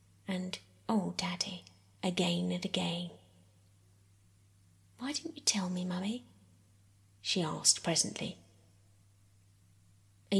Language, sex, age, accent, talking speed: English, female, 30-49, British, 90 wpm